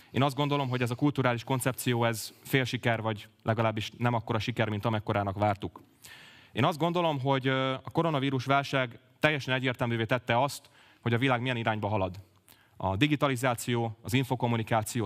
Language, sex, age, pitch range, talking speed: Hungarian, male, 30-49, 110-130 Hz, 160 wpm